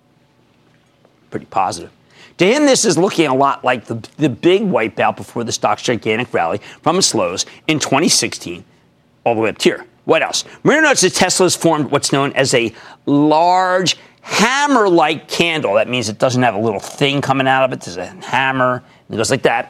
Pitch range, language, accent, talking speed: 130-195 Hz, English, American, 190 wpm